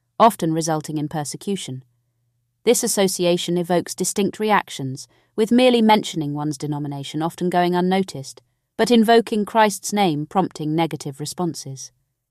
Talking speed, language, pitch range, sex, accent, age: 115 wpm, English, 145-205 Hz, female, British, 40-59